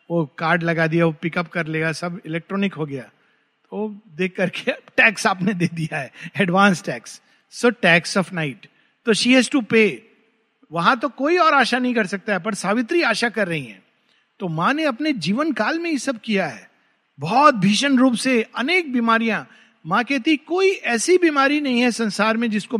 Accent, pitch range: native, 185-255 Hz